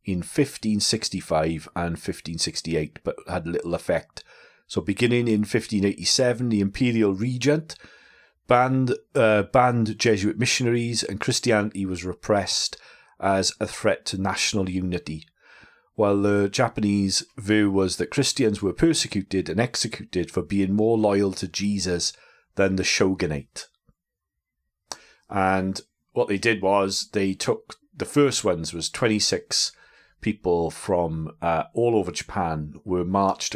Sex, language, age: male, English, 40-59